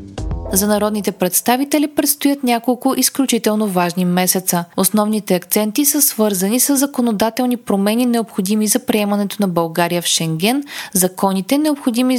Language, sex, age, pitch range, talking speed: Bulgarian, female, 20-39, 180-245 Hz, 120 wpm